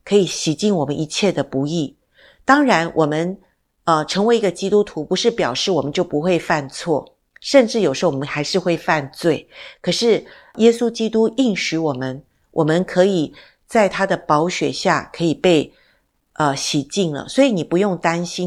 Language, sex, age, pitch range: Chinese, female, 50-69, 160-225 Hz